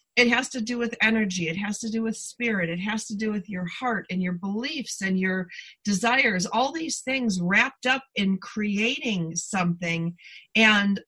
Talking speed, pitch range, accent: 185 wpm, 175-220 Hz, American